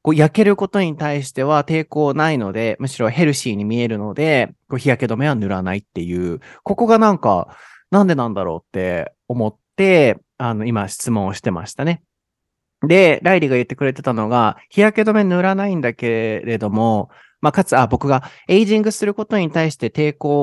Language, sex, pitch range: Japanese, male, 115-175 Hz